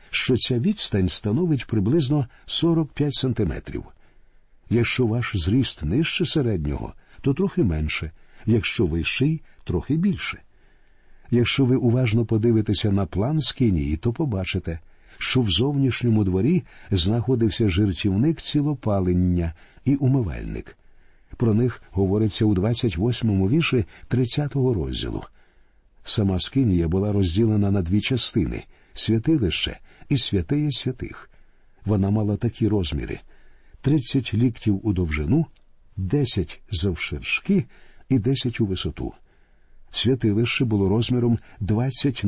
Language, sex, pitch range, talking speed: Ukrainian, male, 95-130 Hz, 110 wpm